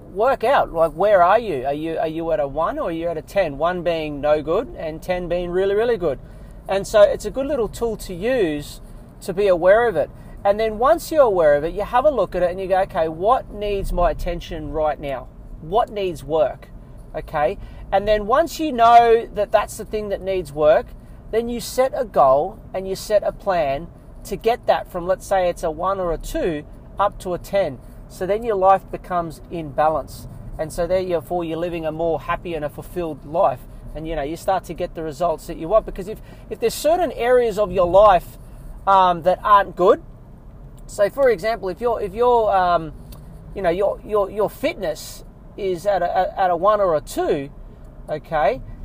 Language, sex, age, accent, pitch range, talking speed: English, male, 40-59, Australian, 165-220 Hz, 215 wpm